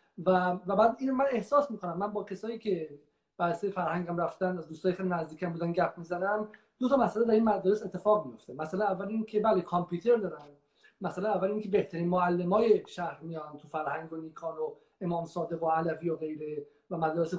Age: 40-59